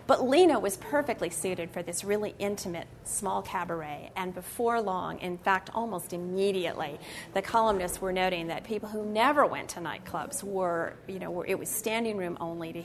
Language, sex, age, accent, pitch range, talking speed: English, female, 40-59, American, 180-215 Hz, 180 wpm